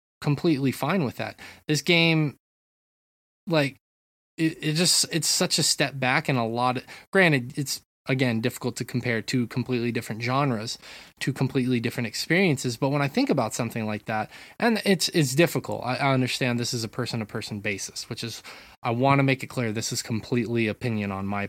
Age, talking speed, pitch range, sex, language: 20-39, 185 wpm, 115-155 Hz, male, English